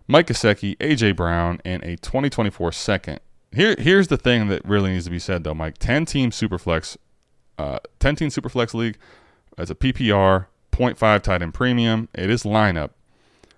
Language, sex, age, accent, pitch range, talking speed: English, male, 20-39, American, 90-130 Hz, 165 wpm